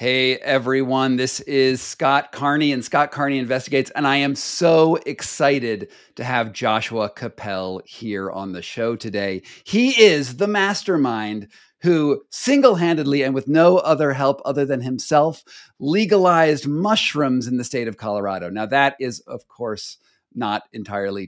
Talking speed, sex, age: 145 wpm, male, 40-59